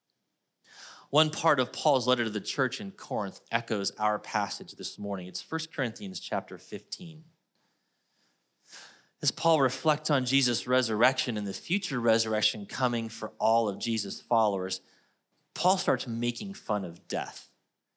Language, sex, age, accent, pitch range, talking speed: English, male, 30-49, American, 120-175 Hz, 140 wpm